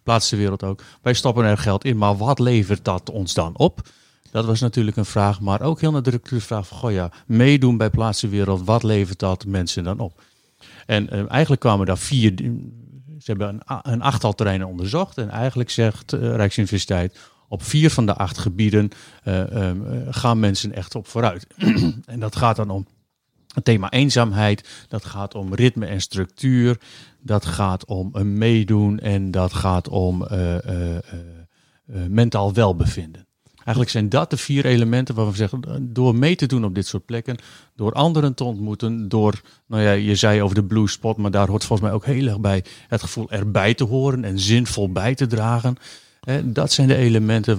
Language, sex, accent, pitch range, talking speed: Dutch, male, Dutch, 100-120 Hz, 190 wpm